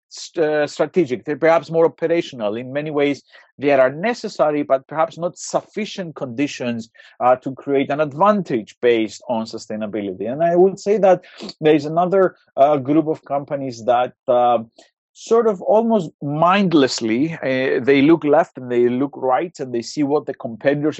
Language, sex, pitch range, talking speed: English, male, 125-165 Hz, 160 wpm